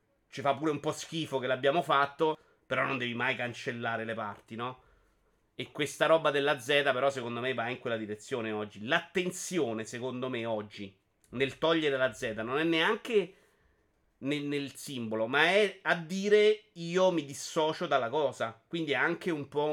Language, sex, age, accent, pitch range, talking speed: Italian, male, 30-49, native, 125-165 Hz, 175 wpm